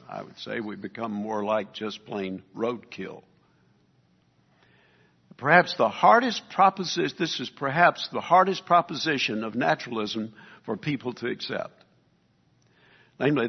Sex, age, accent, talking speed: male, 60-79, American, 120 wpm